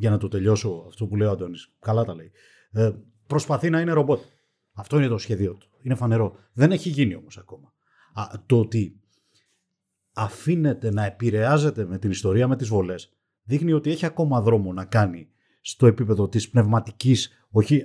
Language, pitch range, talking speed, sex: Greek, 110-145 Hz, 180 wpm, male